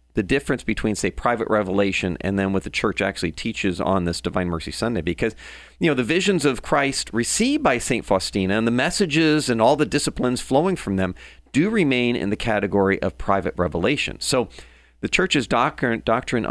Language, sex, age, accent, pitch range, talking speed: English, male, 40-59, American, 95-140 Hz, 190 wpm